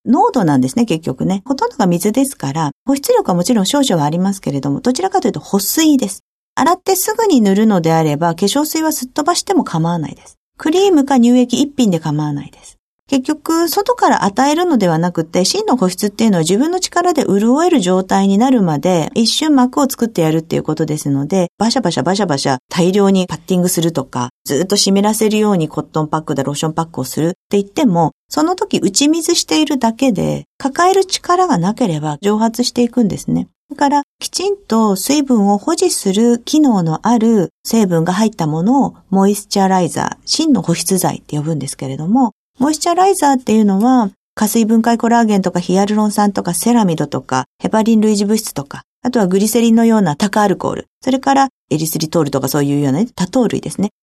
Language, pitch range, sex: Japanese, 175-270 Hz, female